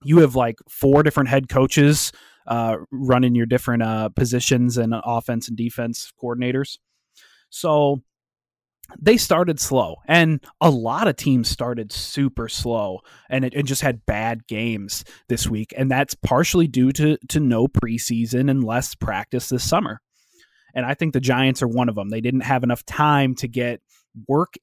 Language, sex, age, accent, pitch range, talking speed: English, male, 20-39, American, 115-135 Hz, 170 wpm